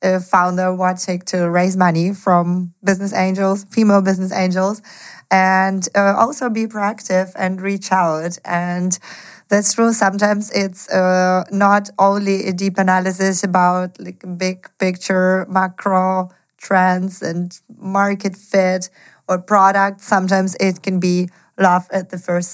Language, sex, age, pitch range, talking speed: English, female, 30-49, 175-200 Hz, 135 wpm